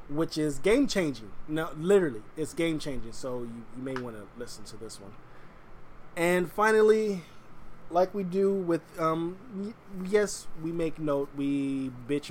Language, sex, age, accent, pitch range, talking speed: English, male, 20-39, American, 130-170 Hz, 160 wpm